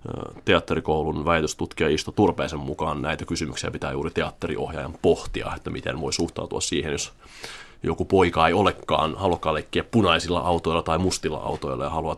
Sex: male